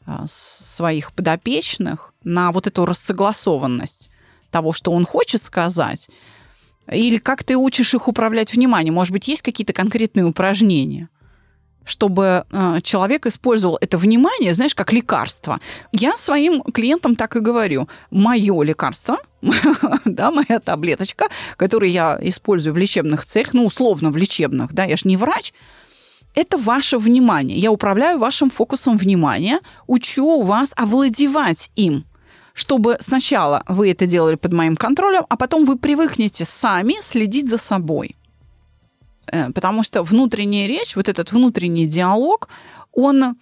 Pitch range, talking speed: 175-255 Hz, 130 wpm